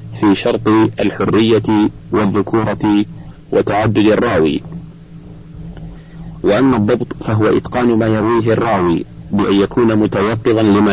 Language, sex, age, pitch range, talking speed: Arabic, male, 40-59, 105-120 Hz, 95 wpm